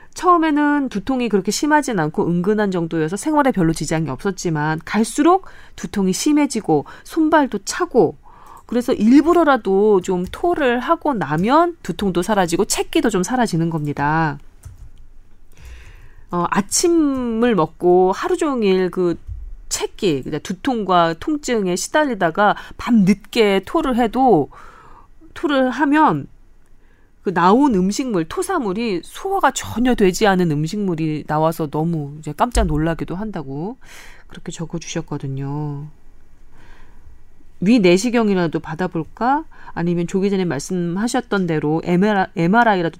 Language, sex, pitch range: Korean, female, 165-245 Hz